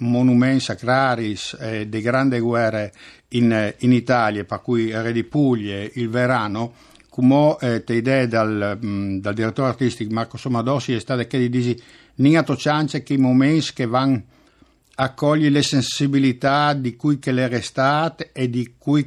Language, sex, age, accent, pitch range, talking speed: Italian, male, 60-79, native, 115-135 Hz, 155 wpm